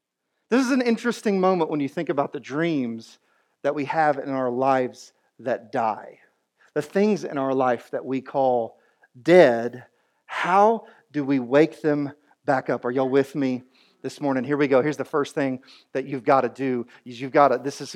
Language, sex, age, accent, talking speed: English, male, 40-59, American, 195 wpm